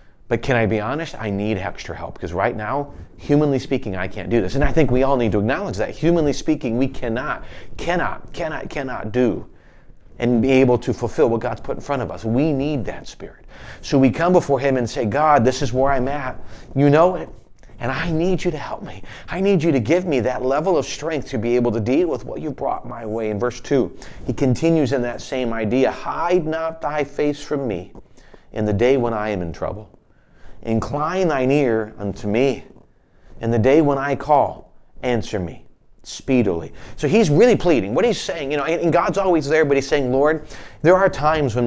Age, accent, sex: 40-59, American, male